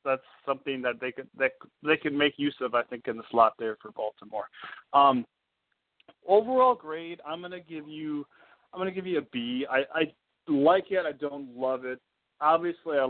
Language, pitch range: English, 120-150 Hz